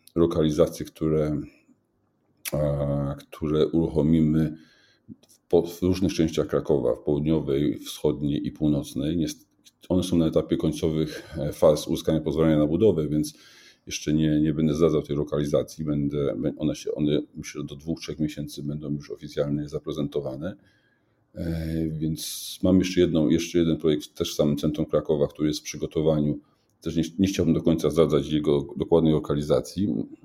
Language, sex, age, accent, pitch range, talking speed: Polish, male, 40-59, native, 75-85 Hz, 150 wpm